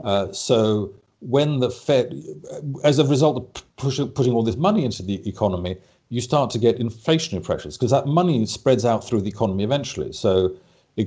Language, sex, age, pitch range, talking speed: English, male, 50-69, 95-115 Hz, 180 wpm